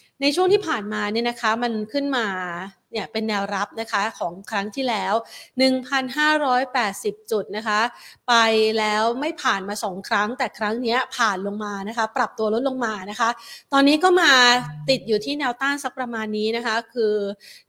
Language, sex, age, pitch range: Thai, female, 30-49, 210-255 Hz